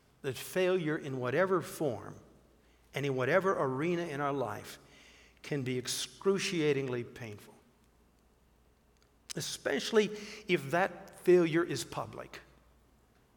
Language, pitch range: English, 135-200 Hz